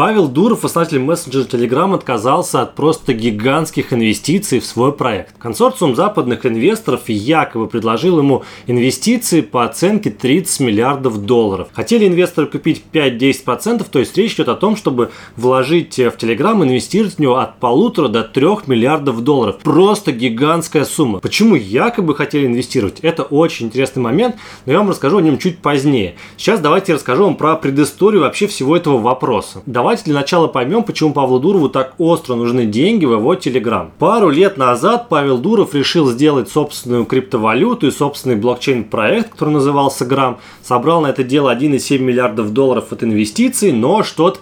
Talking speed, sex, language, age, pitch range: 160 wpm, male, Russian, 20-39, 125-170 Hz